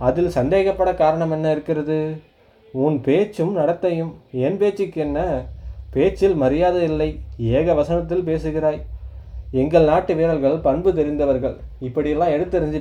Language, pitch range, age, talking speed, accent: Tamil, 125-170 Hz, 20-39, 110 wpm, native